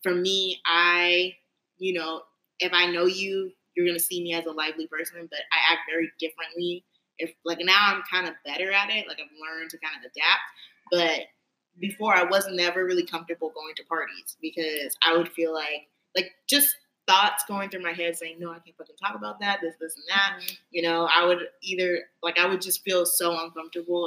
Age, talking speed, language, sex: 20-39, 210 wpm, English, female